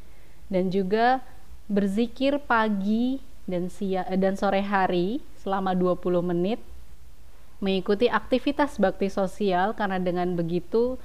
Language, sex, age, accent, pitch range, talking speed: Indonesian, female, 20-39, native, 185-220 Hz, 105 wpm